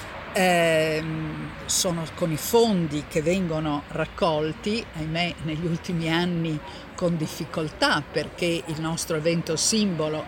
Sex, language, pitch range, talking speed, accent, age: female, Italian, 160-185 Hz, 110 wpm, native, 50-69